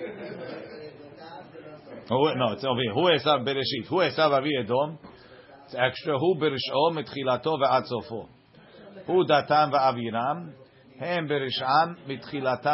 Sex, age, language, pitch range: male, 50-69, English, 120-150 Hz